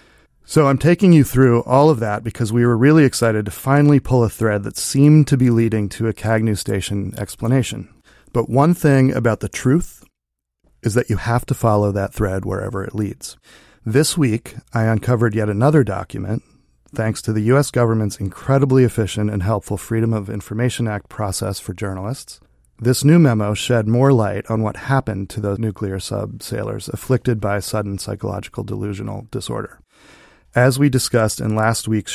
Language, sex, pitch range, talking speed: English, male, 105-125 Hz, 175 wpm